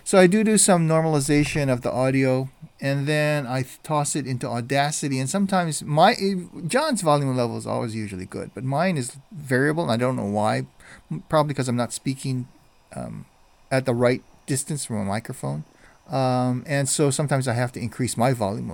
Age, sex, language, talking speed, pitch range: 40-59, male, English, 190 wpm, 115-145 Hz